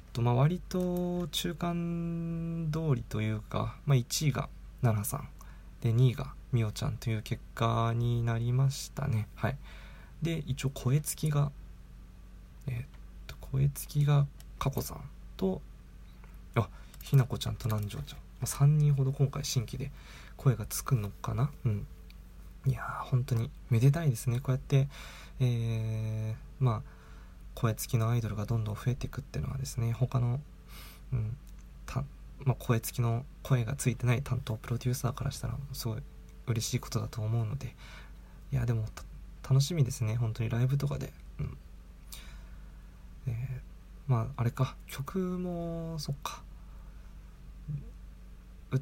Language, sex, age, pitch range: Japanese, male, 20-39, 110-135 Hz